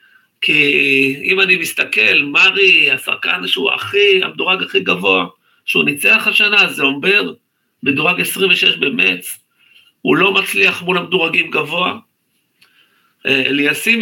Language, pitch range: Hebrew, 130-185 Hz